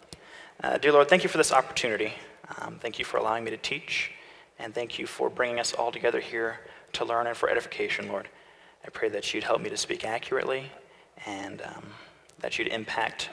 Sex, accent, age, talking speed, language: male, American, 30-49, 205 wpm, English